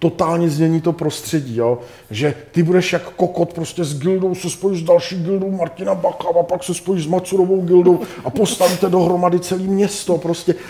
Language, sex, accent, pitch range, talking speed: Czech, male, native, 170-205 Hz, 185 wpm